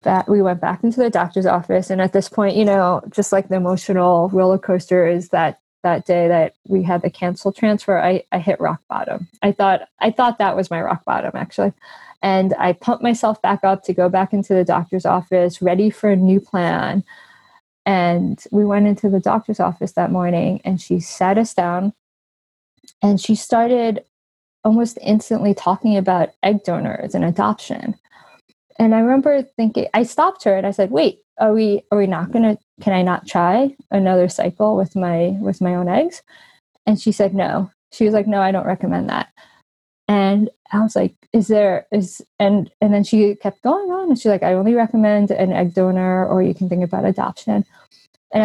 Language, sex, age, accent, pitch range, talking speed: English, female, 20-39, American, 185-215 Hz, 200 wpm